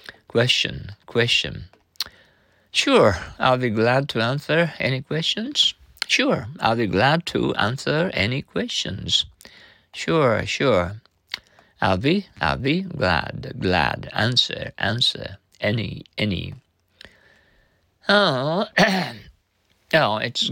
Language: Japanese